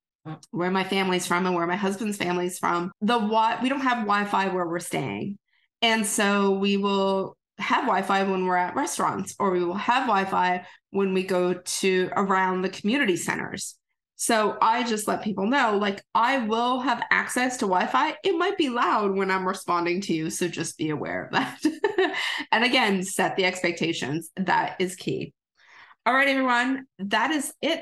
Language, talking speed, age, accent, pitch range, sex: English, 180 wpm, 20-39, American, 185-235 Hz, female